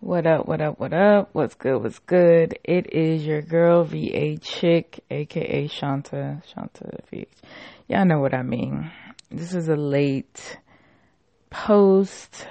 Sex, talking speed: female, 145 wpm